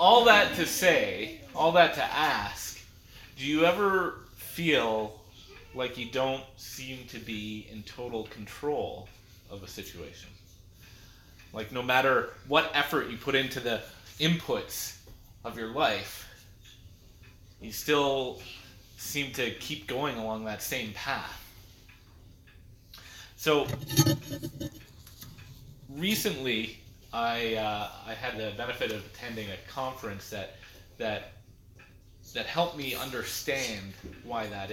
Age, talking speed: 30-49, 115 wpm